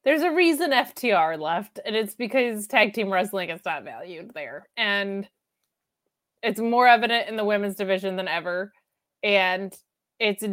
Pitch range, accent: 195-240 Hz, American